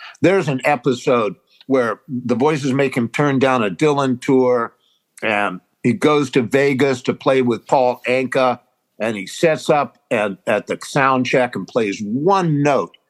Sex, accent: male, American